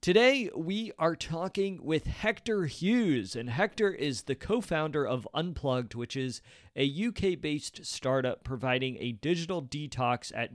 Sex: male